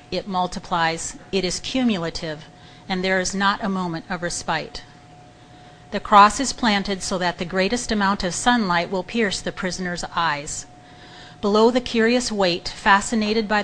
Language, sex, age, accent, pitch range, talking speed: English, female, 40-59, American, 170-205 Hz, 155 wpm